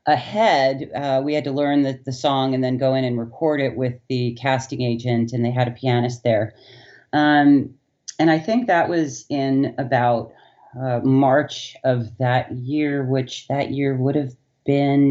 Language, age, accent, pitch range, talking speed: English, 40-59, American, 125-150 Hz, 180 wpm